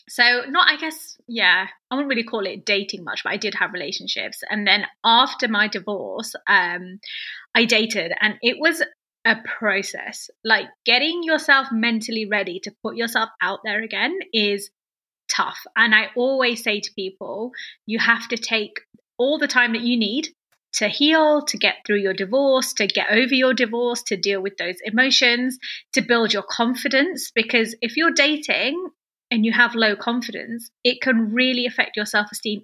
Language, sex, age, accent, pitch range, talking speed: English, female, 20-39, British, 205-255 Hz, 175 wpm